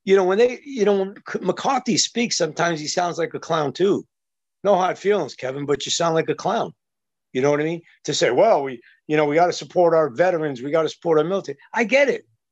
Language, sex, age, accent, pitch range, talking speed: English, male, 50-69, American, 150-215 Hz, 250 wpm